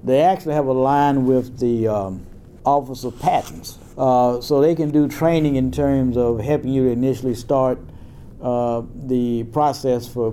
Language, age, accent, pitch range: English, 60-79, American, 120-140 Hz